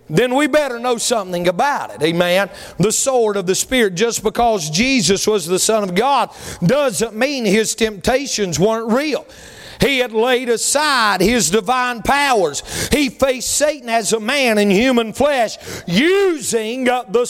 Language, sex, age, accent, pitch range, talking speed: English, male, 40-59, American, 225-285 Hz, 155 wpm